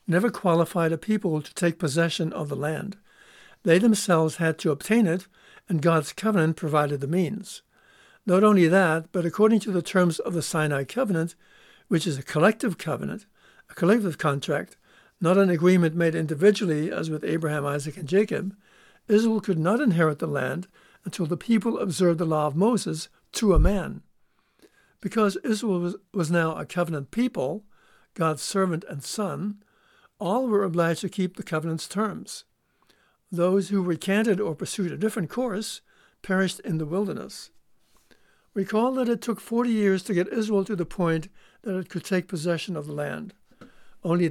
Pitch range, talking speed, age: 165-210 Hz, 165 wpm, 60-79